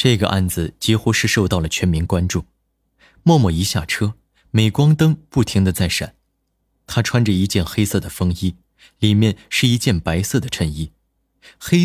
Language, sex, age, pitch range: Chinese, male, 20-39, 90-120 Hz